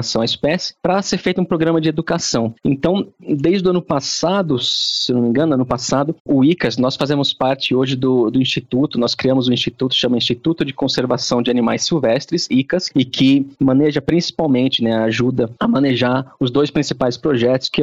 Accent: Brazilian